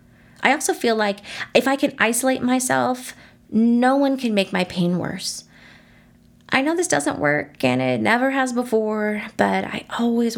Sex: female